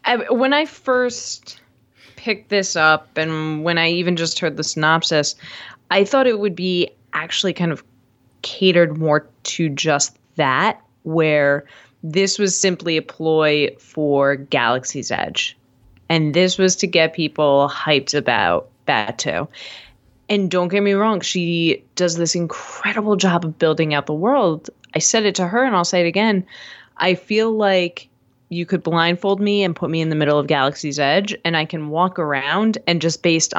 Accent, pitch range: American, 145-195 Hz